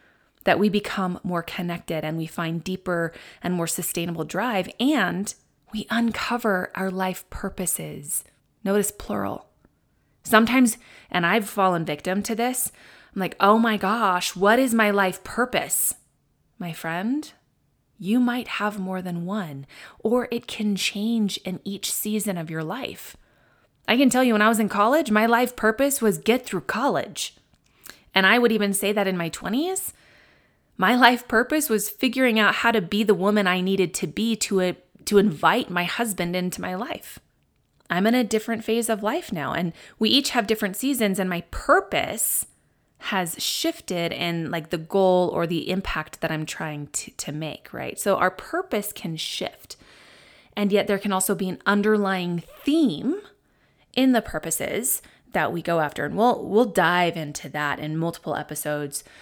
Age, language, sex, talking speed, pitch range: 20-39, English, female, 170 wpm, 175-225 Hz